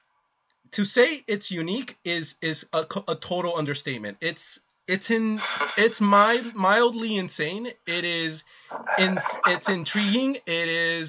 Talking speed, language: 130 wpm, English